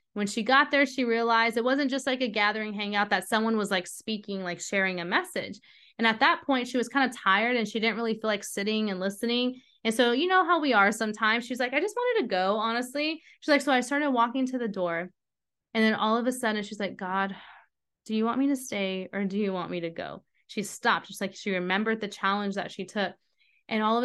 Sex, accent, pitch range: female, American, 195-245 Hz